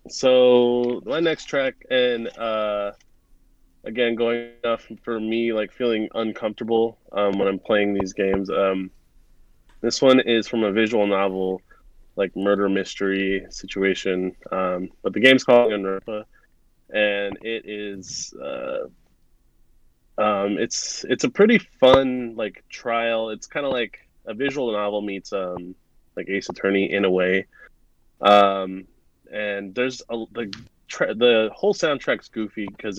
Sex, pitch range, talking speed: male, 100-120 Hz, 135 wpm